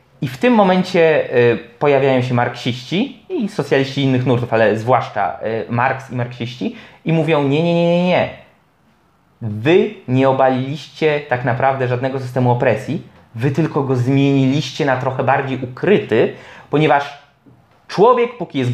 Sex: male